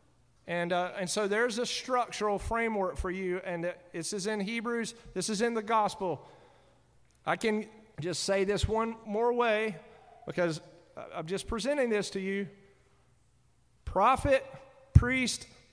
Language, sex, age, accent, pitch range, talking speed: English, male, 40-59, American, 180-235 Hz, 140 wpm